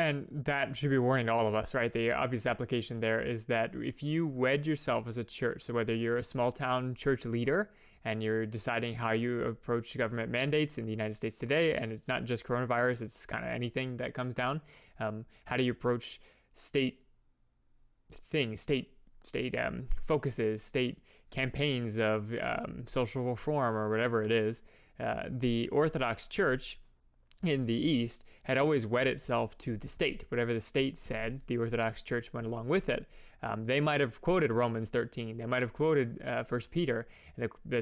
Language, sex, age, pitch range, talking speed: English, male, 20-39, 115-135 Hz, 190 wpm